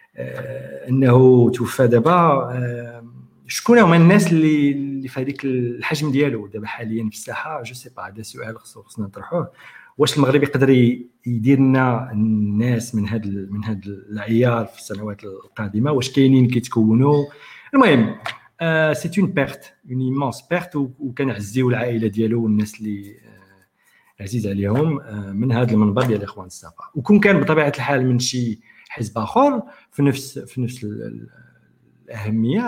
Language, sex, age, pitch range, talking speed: Arabic, male, 50-69, 110-140 Hz, 135 wpm